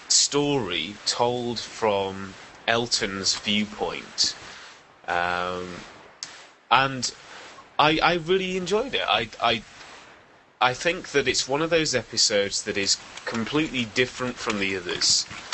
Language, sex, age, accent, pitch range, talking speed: English, male, 20-39, British, 105-140 Hz, 110 wpm